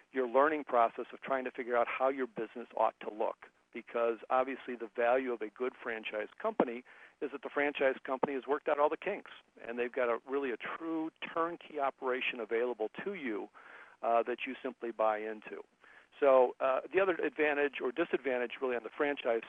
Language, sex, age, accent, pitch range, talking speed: English, male, 50-69, American, 115-135 Hz, 195 wpm